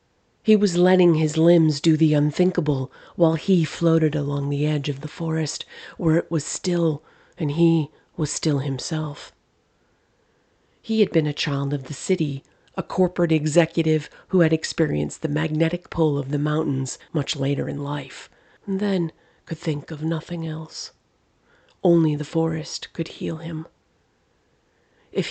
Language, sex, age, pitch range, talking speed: English, female, 40-59, 140-165 Hz, 150 wpm